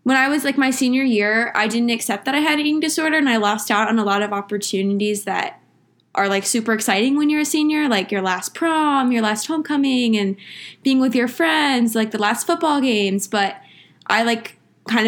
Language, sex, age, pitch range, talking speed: English, female, 20-39, 200-255 Hz, 220 wpm